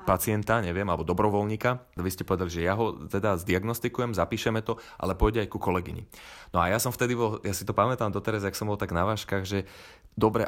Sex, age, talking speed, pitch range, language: male, 30-49, 225 wpm, 90-110 Hz, Slovak